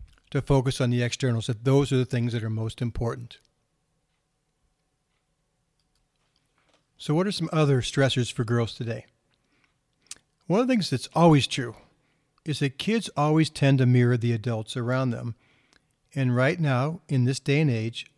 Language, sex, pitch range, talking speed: English, male, 125-150 Hz, 160 wpm